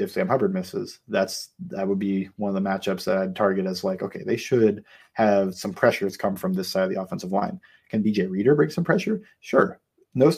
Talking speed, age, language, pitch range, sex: 225 wpm, 30-49, English, 100-155 Hz, male